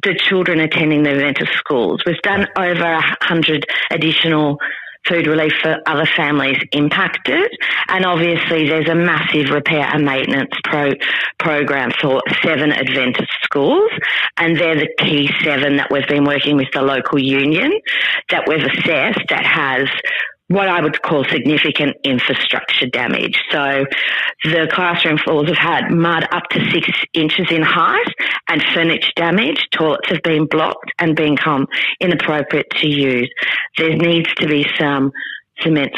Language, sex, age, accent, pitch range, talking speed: English, female, 40-59, Australian, 145-170 Hz, 145 wpm